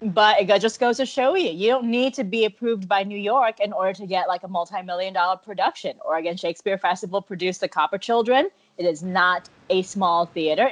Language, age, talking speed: English, 20-39, 205 wpm